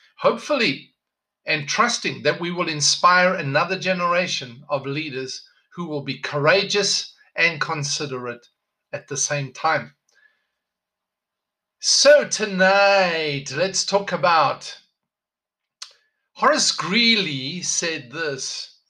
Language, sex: English, male